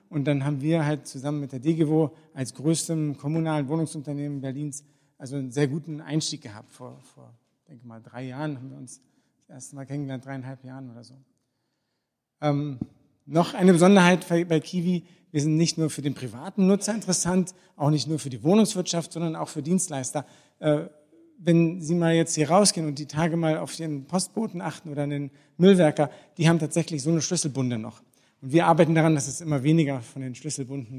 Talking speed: 190 wpm